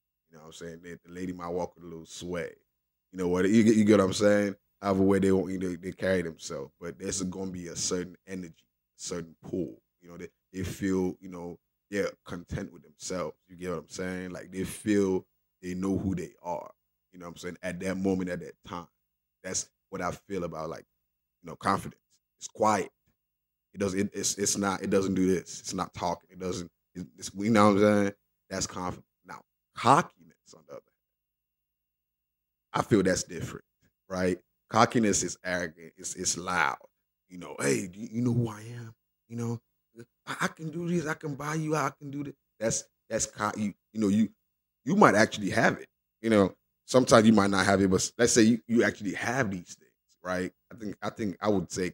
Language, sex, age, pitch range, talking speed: English, male, 20-39, 80-105 Hz, 215 wpm